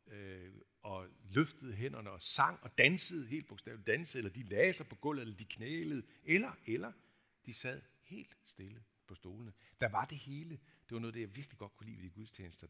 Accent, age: native, 60-79